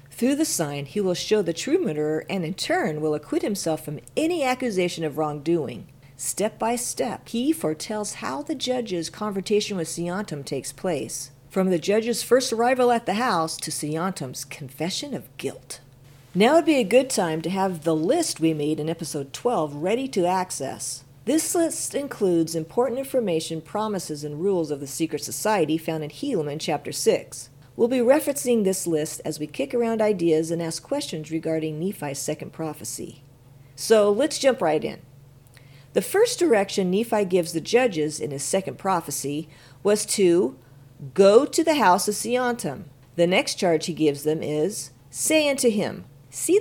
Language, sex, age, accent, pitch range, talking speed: English, female, 50-69, American, 150-235 Hz, 170 wpm